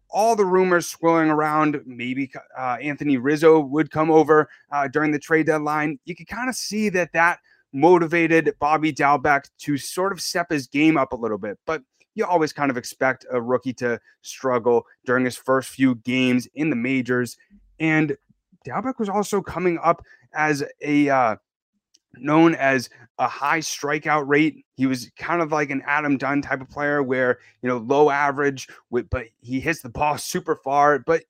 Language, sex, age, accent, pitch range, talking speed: English, male, 30-49, American, 130-160 Hz, 180 wpm